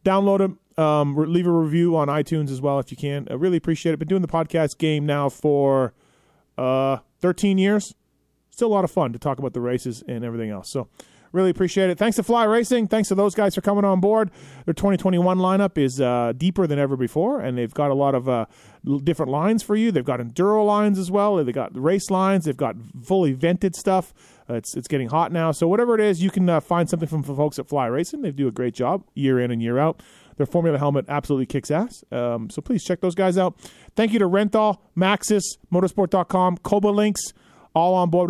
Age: 30-49